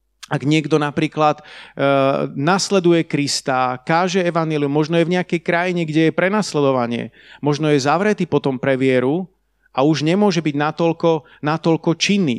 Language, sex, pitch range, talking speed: Slovak, male, 140-190 Hz, 130 wpm